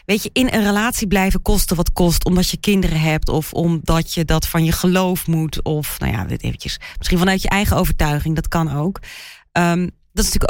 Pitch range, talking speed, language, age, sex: 155-190 Hz, 215 wpm, Dutch, 30-49, female